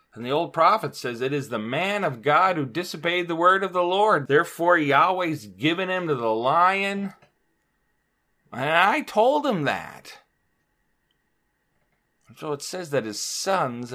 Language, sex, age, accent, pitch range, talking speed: English, male, 40-59, American, 120-165 Hz, 155 wpm